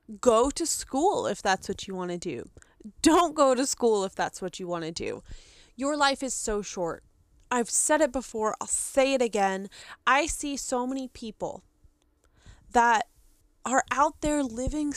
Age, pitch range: 20-39, 205-285 Hz